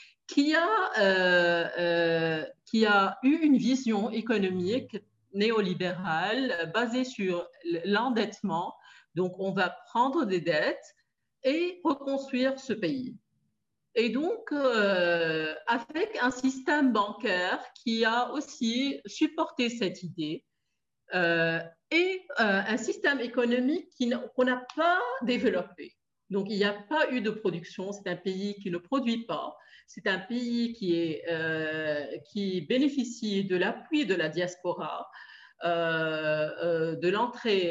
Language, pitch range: French, 180-255 Hz